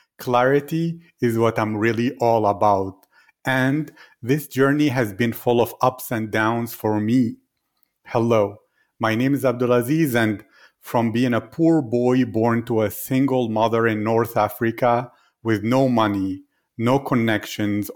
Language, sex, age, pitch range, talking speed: English, male, 40-59, 115-130 Hz, 145 wpm